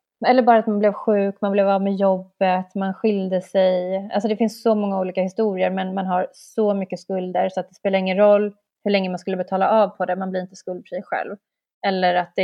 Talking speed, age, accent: 230 wpm, 30-49, native